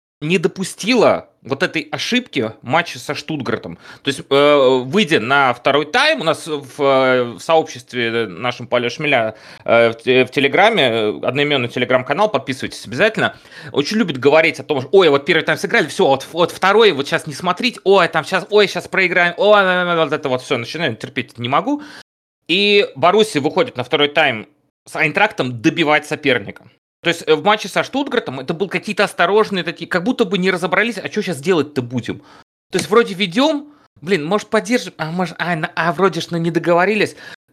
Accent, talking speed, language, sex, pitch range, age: native, 175 wpm, Russian, male, 125-180 Hz, 30-49